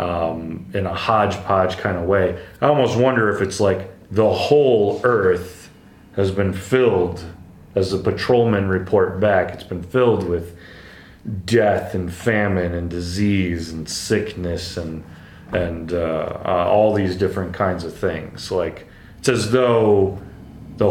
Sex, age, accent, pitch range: male, 30-49, American, 90-115 Hz